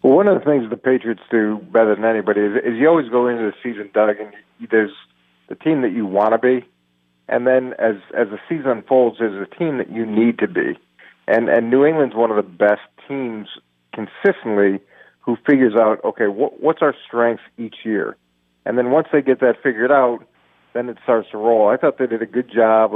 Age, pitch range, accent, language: 40-59, 105-125 Hz, American, English